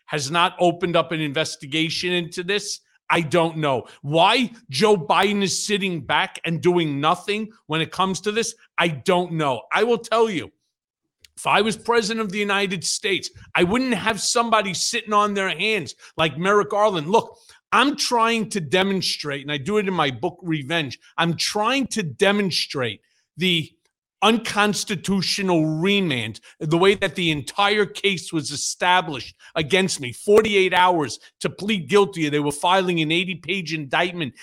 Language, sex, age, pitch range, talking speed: English, male, 40-59, 160-205 Hz, 160 wpm